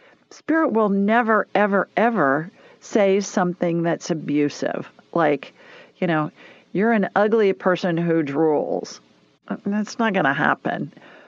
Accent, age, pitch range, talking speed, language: American, 50-69, 170-225 Hz, 120 wpm, English